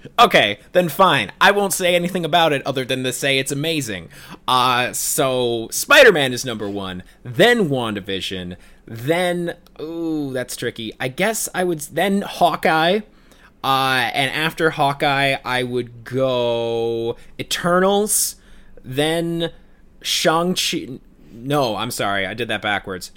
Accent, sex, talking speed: American, male, 130 wpm